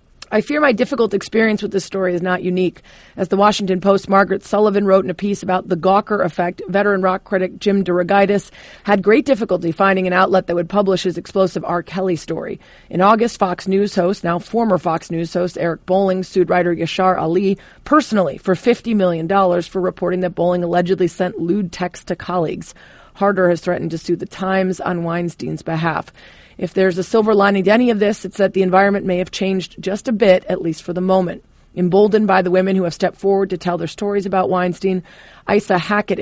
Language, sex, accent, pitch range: English, female, American, 175-200 Hz